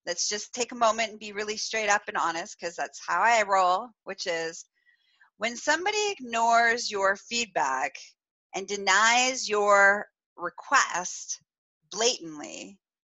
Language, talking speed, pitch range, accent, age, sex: English, 135 wpm, 185-250 Hz, American, 30-49, female